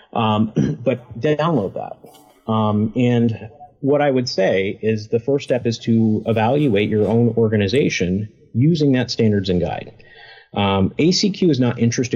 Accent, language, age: American, English, 30-49